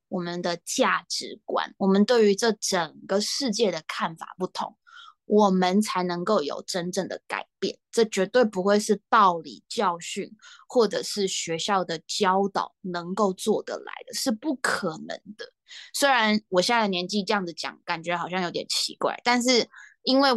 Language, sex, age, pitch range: Chinese, female, 20-39, 180-225 Hz